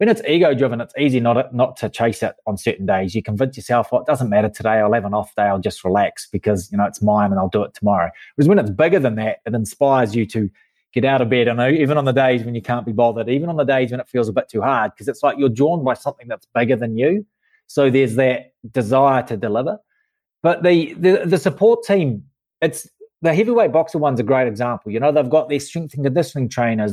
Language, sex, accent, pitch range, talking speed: English, male, Australian, 120-160 Hz, 255 wpm